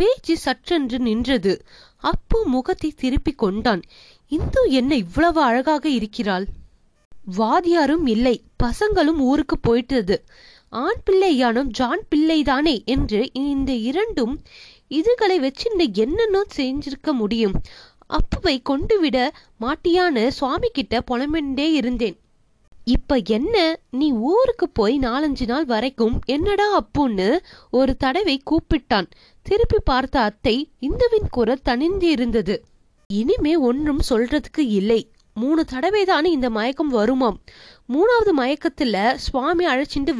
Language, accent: Tamil, native